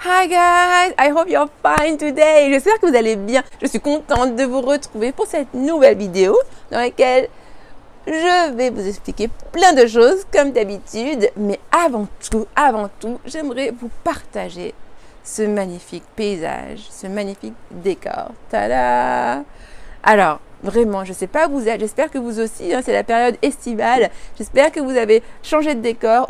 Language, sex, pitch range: French, female, 220-290 Hz